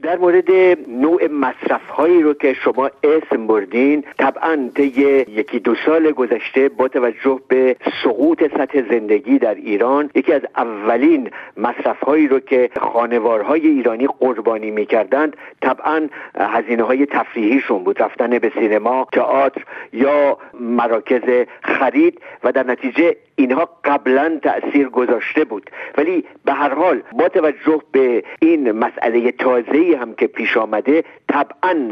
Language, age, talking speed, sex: Persian, 60-79, 130 wpm, male